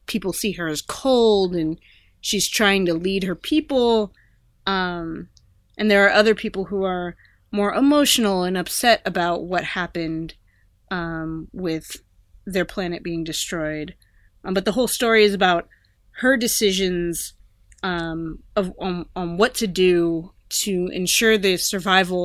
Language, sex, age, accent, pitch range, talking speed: English, female, 20-39, American, 155-195 Hz, 145 wpm